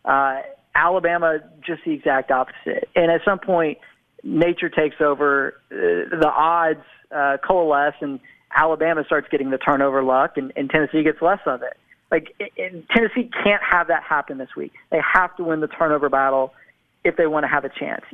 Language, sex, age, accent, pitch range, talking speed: English, male, 40-59, American, 145-175 Hz, 180 wpm